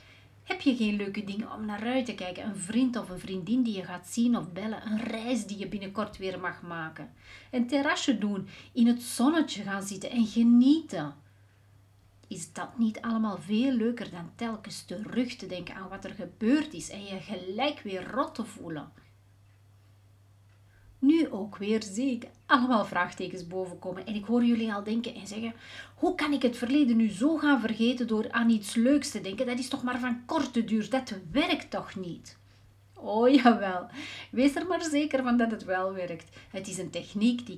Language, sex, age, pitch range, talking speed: Dutch, female, 30-49, 180-240 Hz, 190 wpm